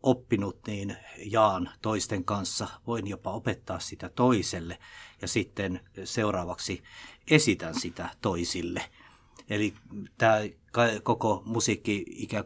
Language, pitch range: Finnish, 95-115 Hz